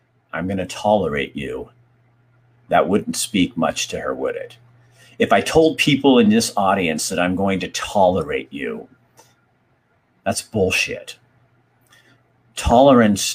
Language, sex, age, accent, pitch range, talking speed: English, male, 50-69, American, 105-125 Hz, 130 wpm